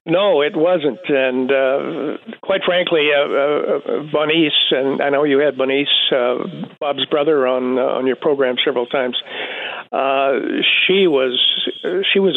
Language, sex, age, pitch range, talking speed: English, male, 50-69, 135-170 Hz, 150 wpm